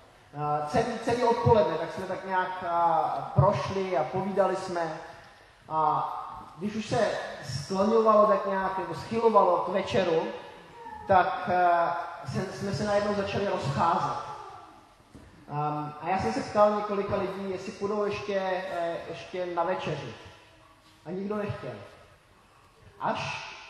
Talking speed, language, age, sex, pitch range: 130 wpm, Czech, 20-39, male, 155-195 Hz